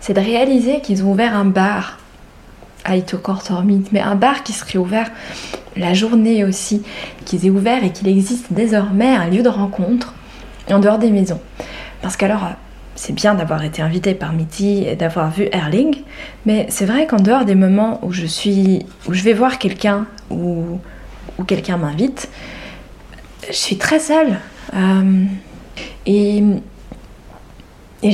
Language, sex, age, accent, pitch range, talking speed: French, female, 20-39, French, 190-225 Hz, 155 wpm